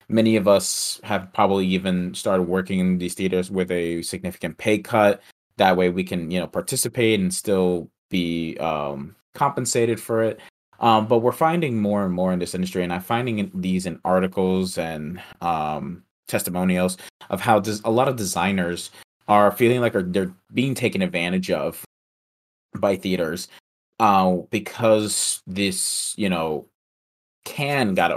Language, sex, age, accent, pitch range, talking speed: English, male, 30-49, American, 90-110 Hz, 155 wpm